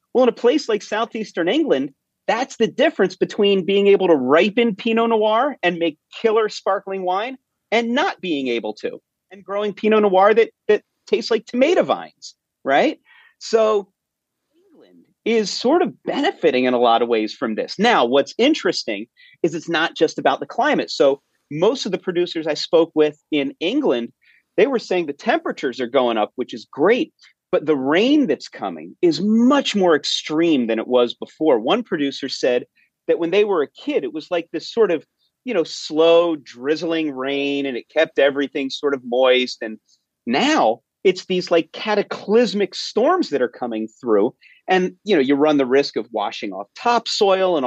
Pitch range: 145-230 Hz